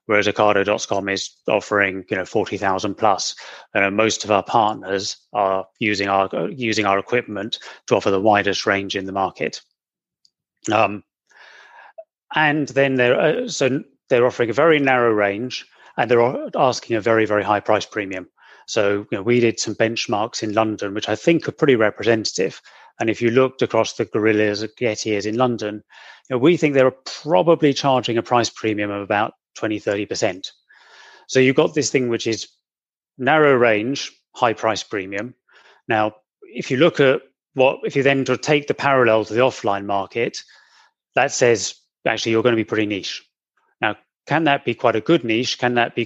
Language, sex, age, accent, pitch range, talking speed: English, male, 30-49, British, 105-125 Hz, 180 wpm